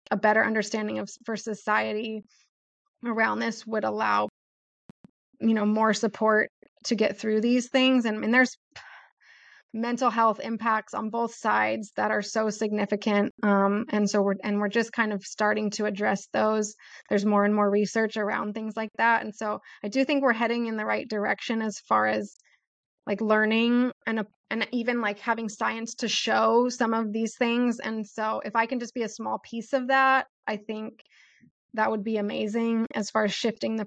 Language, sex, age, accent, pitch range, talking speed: English, female, 20-39, American, 215-235 Hz, 190 wpm